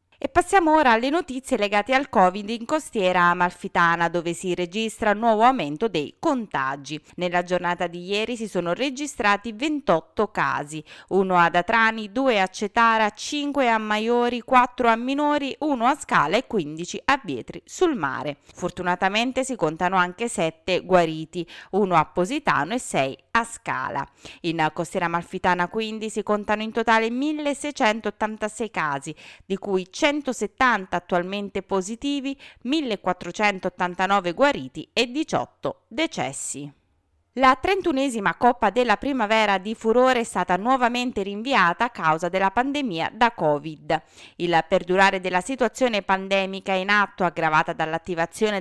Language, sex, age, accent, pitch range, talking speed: Italian, female, 20-39, native, 175-240 Hz, 135 wpm